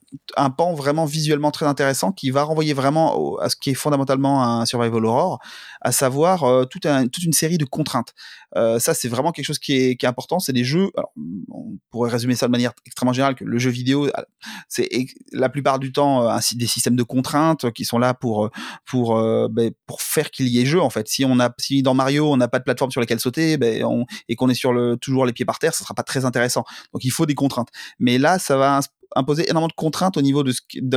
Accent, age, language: French, 30-49, French